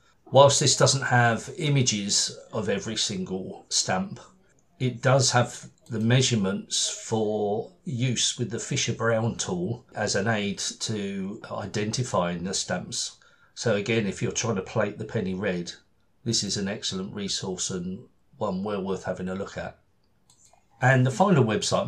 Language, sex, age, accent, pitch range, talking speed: English, male, 50-69, British, 105-130 Hz, 150 wpm